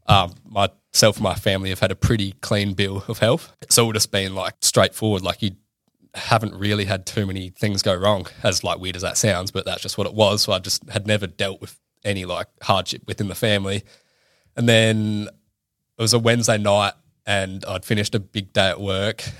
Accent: Australian